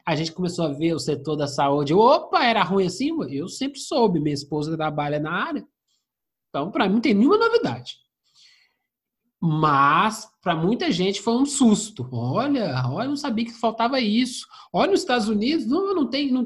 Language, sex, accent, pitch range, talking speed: Portuguese, male, Brazilian, 170-260 Hz, 180 wpm